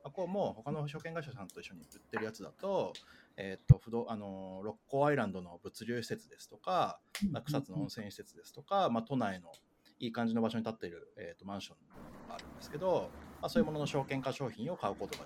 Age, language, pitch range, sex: 30-49, Japanese, 120-170 Hz, male